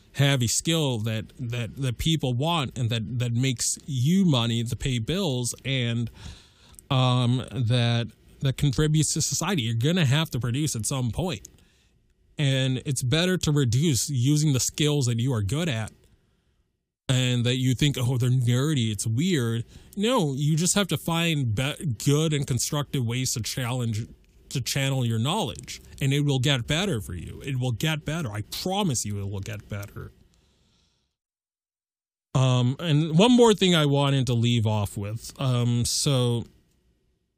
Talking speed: 165 wpm